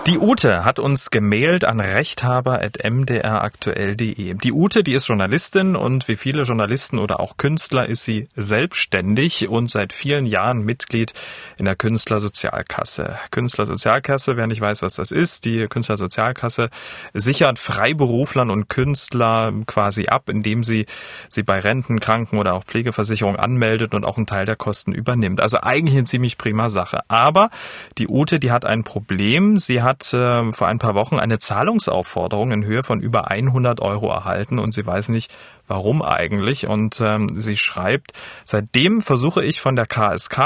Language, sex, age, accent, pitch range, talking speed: German, male, 30-49, German, 105-125 Hz, 160 wpm